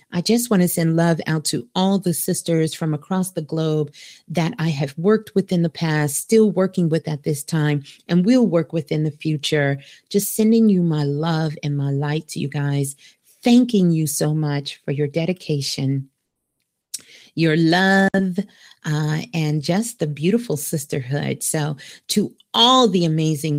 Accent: American